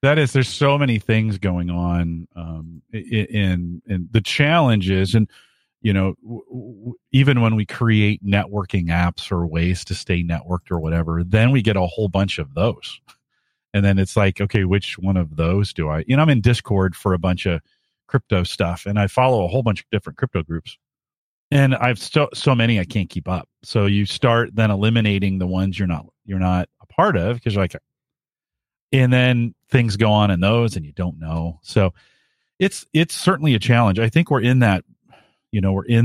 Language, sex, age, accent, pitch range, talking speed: English, male, 40-59, American, 90-115 Hz, 205 wpm